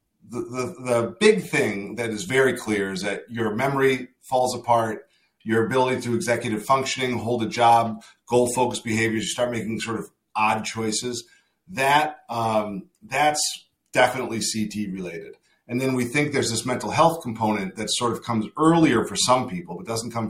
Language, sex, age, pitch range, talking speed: English, male, 40-59, 110-130 Hz, 175 wpm